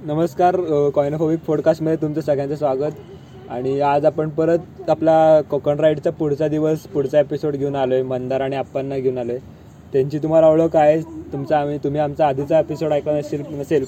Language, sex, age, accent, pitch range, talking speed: Marathi, male, 20-39, native, 140-160 Hz, 170 wpm